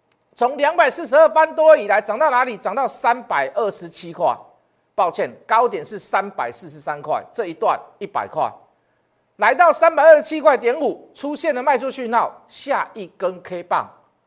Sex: male